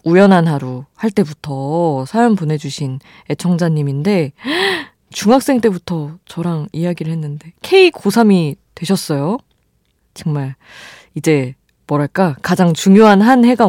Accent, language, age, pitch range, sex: native, Korean, 20-39, 145-220 Hz, female